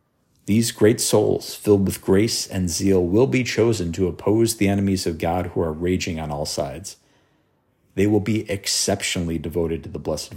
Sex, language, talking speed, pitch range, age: male, English, 180 wpm, 85-110 Hz, 50-69